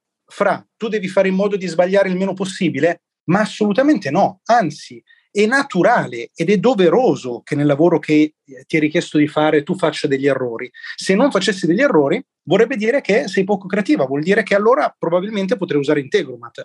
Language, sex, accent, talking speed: Italian, male, native, 185 wpm